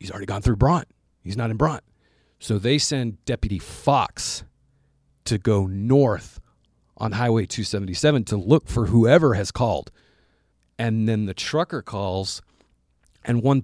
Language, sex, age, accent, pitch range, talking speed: English, male, 40-59, American, 100-125 Hz, 145 wpm